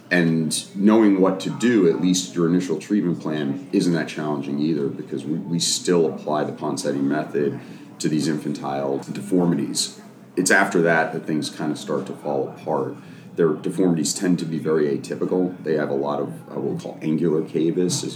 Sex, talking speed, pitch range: male, 180 wpm, 70-80 Hz